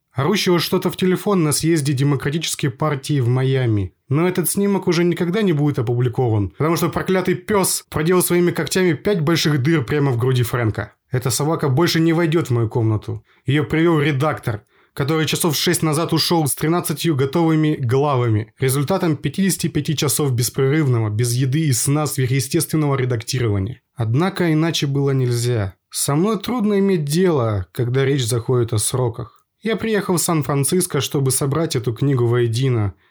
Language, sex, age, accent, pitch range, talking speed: Russian, male, 20-39, native, 125-170 Hz, 155 wpm